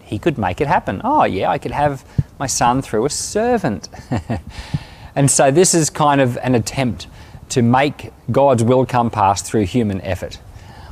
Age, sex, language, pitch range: 30-49, male, English, 100-135 Hz